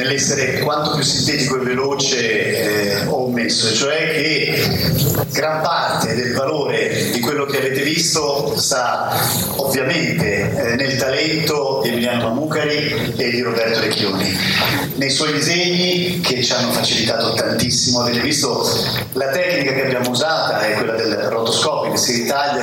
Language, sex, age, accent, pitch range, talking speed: Italian, male, 40-59, native, 120-150 Hz, 145 wpm